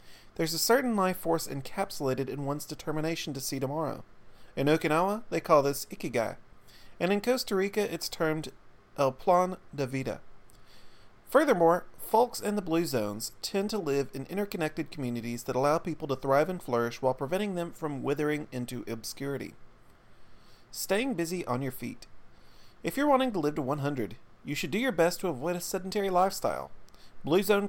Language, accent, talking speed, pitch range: English, American, 170 wpm, 125-185 Hz